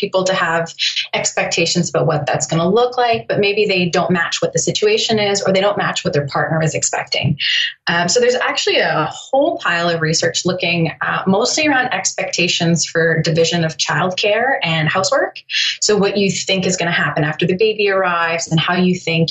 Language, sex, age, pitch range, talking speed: English, female, 20-39, 160-190 Hz, 200 wpm